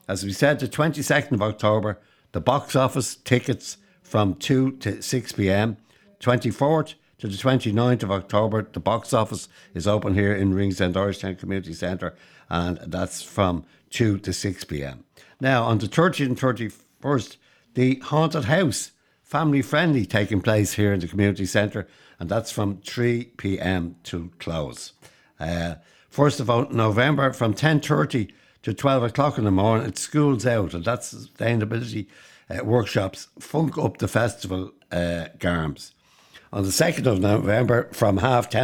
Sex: male